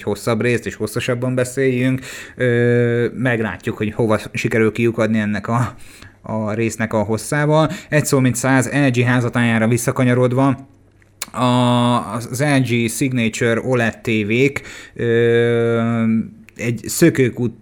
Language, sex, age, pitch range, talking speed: Hungarian, male, 30-49, 105-125 Hz, 100 wpm